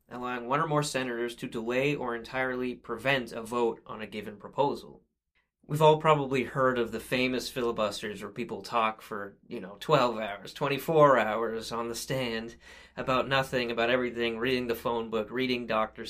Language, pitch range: English, 115-140 Hz